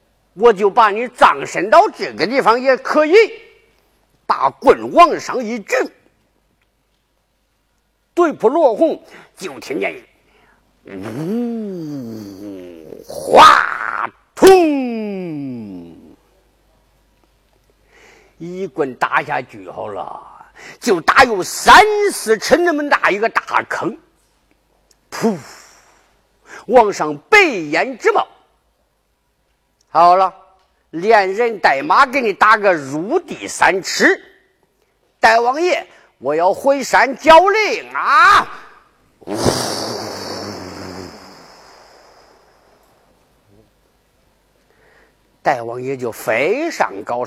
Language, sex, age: Chinese, male, 50-69